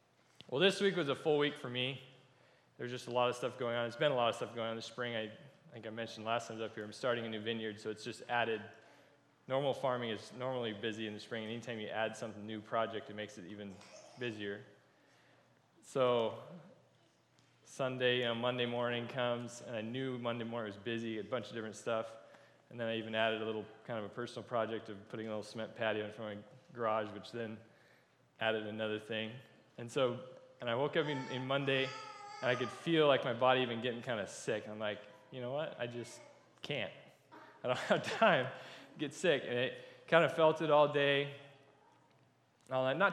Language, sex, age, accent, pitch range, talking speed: English, male, 20-39, American, 110-140 Hz, 225 wpm